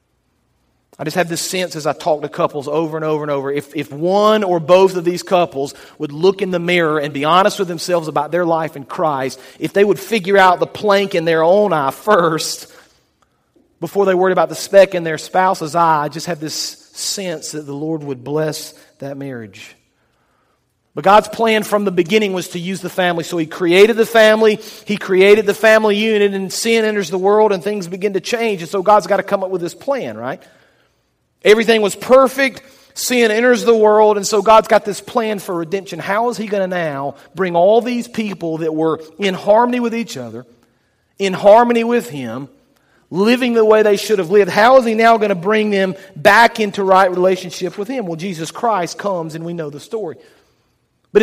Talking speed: 210 wpm